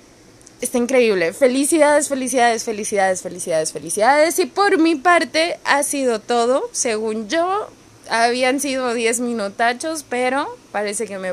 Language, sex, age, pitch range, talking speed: Spanish, female, 20-39, 210-310 Hz, 125 wpm